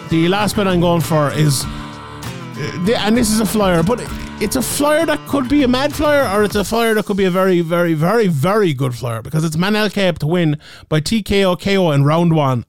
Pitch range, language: 130-175 Hz, English